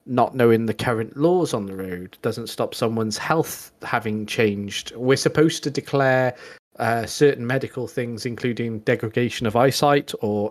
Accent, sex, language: British, male, English